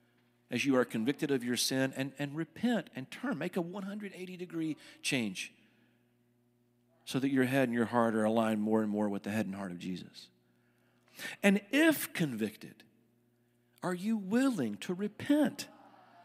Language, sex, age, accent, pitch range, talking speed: English, male, 50-69, American, 120-205 Hz, 165 wpm